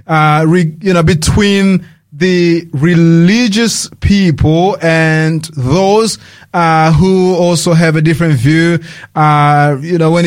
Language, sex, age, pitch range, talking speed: English, male, 30-49, 155-200 Hz, 125 wpm